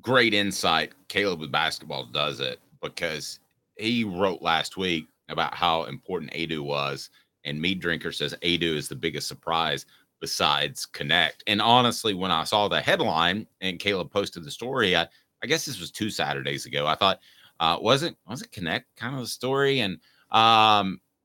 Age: 30-49